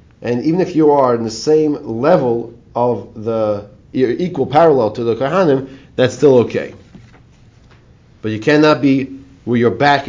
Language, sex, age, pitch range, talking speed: English, male, 40-59, 115-150 Hz, 160 wpm